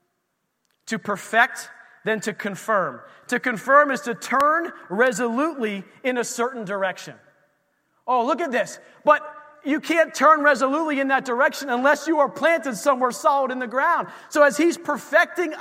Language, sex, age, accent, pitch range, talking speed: English, male, 30-49, American, 225-295 Hz, 155 wpm